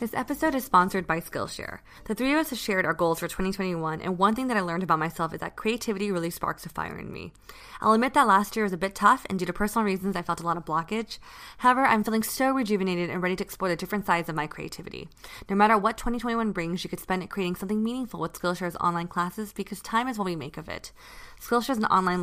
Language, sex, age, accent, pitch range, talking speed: English, female, 20-39, American, 175-220 Hz, 260 wpm